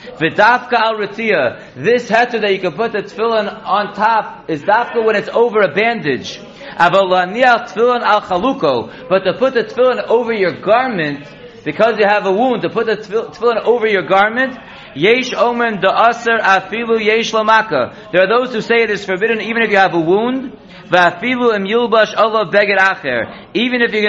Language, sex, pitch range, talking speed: English, male, 185-225 Hz, 135 wpm